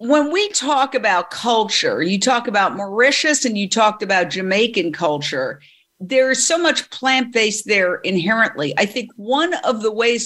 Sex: female